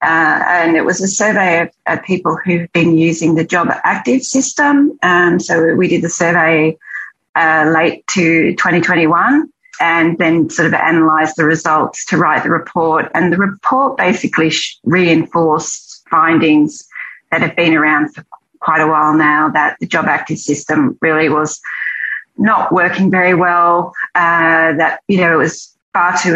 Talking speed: 160 wpm